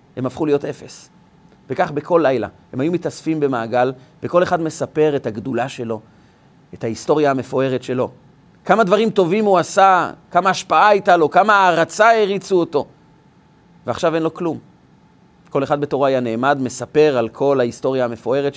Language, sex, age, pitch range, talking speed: Hebrew, male, 30-49, 130-175 Hz, 155 wpm